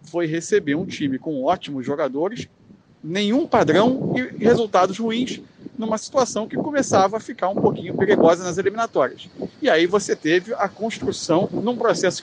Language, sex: Portuguese, male